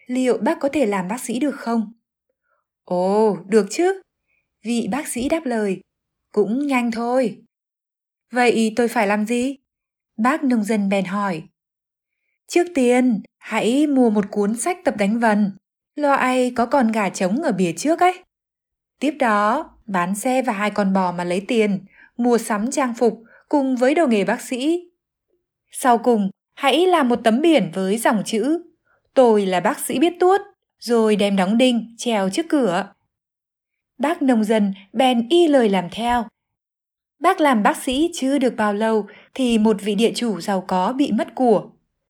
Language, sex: Vietnamese, female